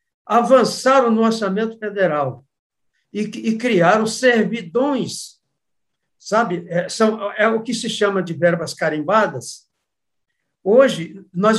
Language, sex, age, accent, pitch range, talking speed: Portuguese, male, 60-79, Brazilian, 170-230 Hz, 110 wpm